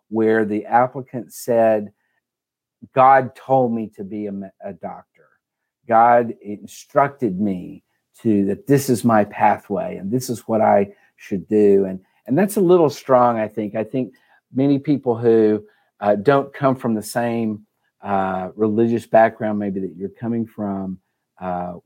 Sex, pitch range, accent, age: male, 105-125 Hz, American, 50-69